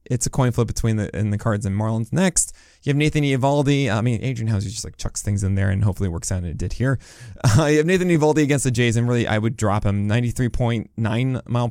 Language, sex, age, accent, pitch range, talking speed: English, male, 20-39, American, 110-145 Hz, 260 wpm